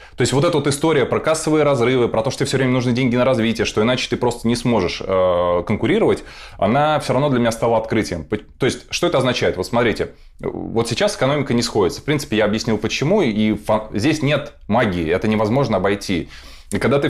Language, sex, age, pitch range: Russian, male, 20-39, 100-135 Hz